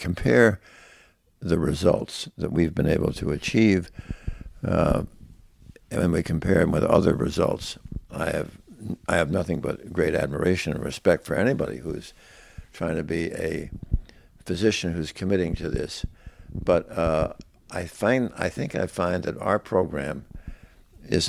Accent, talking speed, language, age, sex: American, 145 wpm, English, 60-79, male